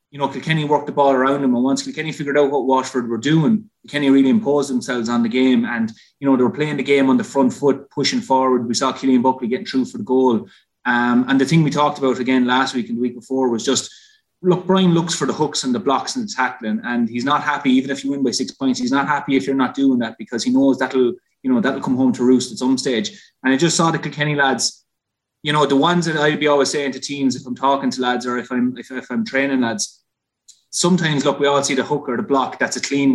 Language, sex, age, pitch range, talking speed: English, male, 20-39, 125-155 Hz, 275 wpm